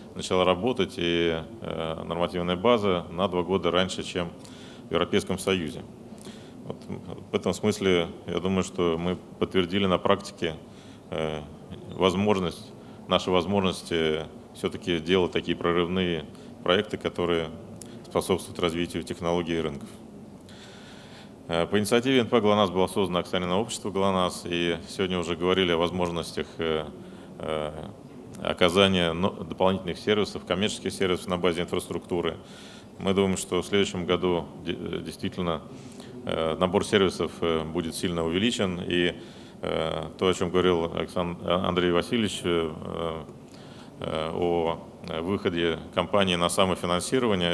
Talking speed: 110 wpm